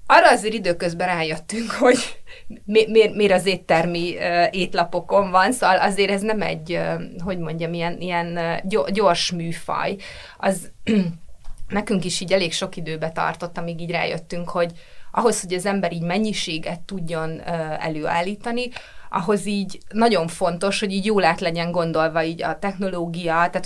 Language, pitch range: Hungarian, 170-215 Hz